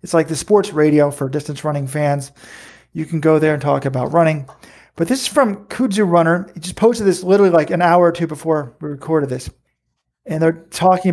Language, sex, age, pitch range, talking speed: English, male, 40-59, 150-185 Hz, 215 wpm